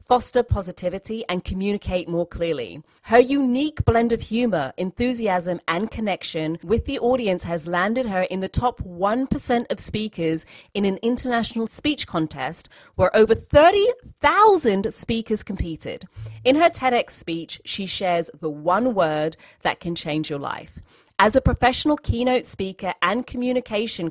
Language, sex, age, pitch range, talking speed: English, female, 30-49, 170-245 Hz, 140 wpm